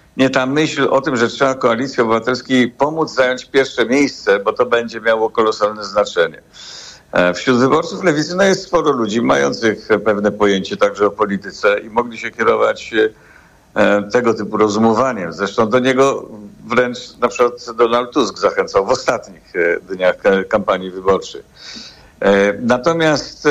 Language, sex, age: Polish, male, 50-69